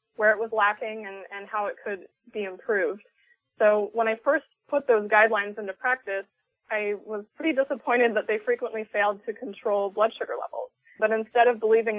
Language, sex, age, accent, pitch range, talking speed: English, female, 20-39, American, 200-235 Hz, 185 wpm